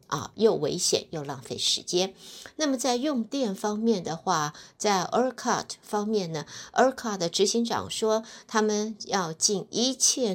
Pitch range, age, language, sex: 170-225 Hz, 60-79, Chinese, female